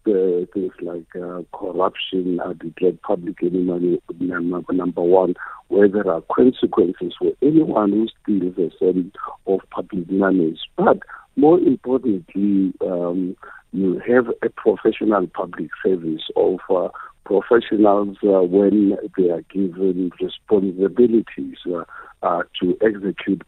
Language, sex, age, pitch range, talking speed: English, male, 50-69, 90-110 Hz, 120 wpm